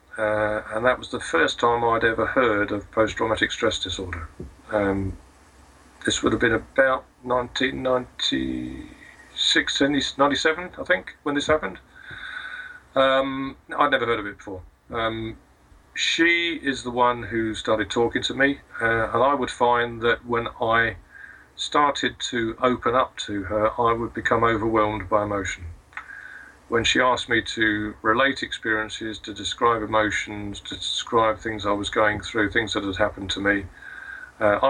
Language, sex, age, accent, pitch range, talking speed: English, male, 40-59, British, 105-125 Hz, 150 wpm